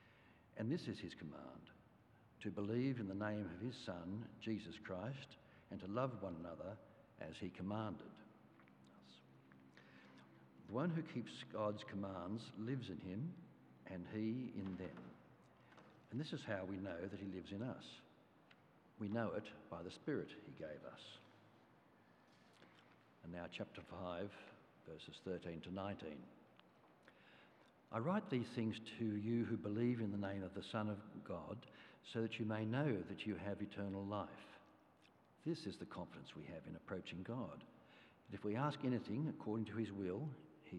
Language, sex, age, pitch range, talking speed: English, male, 60-79, 95-115 Hz, 160 wpm